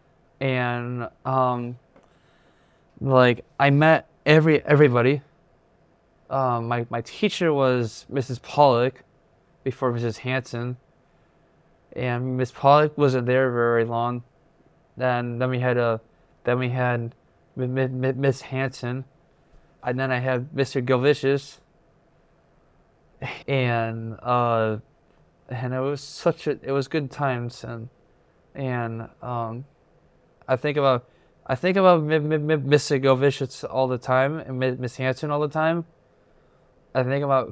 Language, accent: English, American